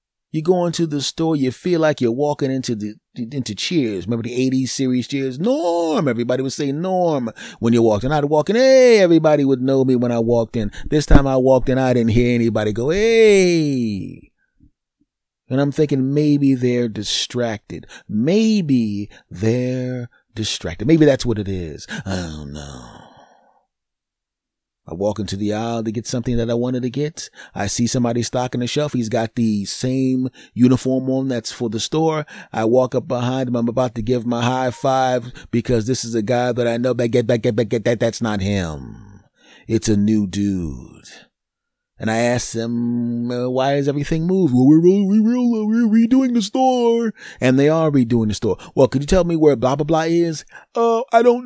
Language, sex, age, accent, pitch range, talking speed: English, male, 30-49, American, 115-155 Hz, 190 wpm